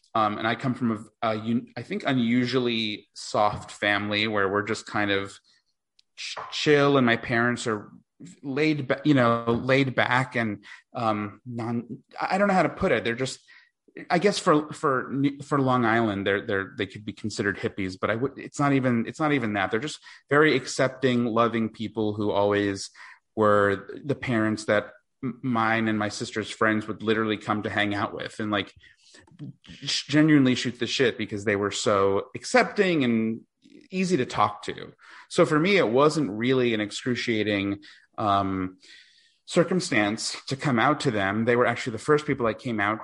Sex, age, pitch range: male, 30-49, 105-140 Hz